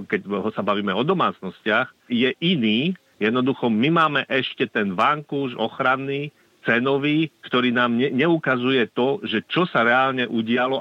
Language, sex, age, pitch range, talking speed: Slovak, male, 50-69, 120-140 Hz, 140 wpm